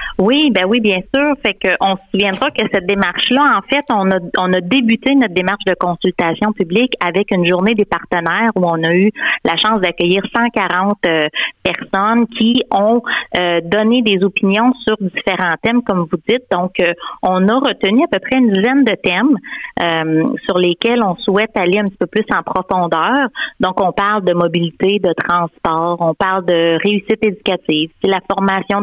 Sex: female